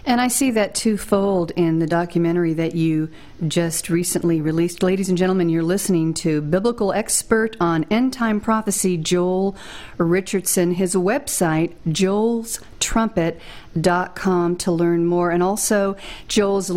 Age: 50-69